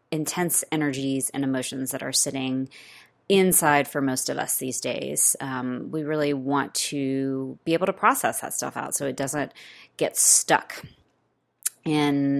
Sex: female